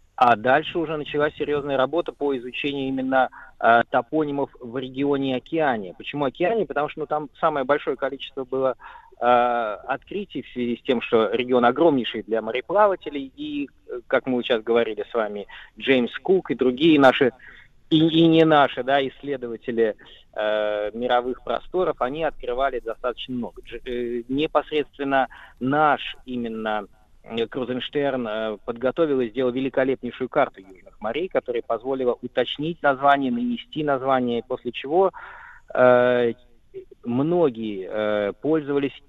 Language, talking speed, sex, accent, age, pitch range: Russian, 130 wpm, male, native, 20-39, 120-150 Hz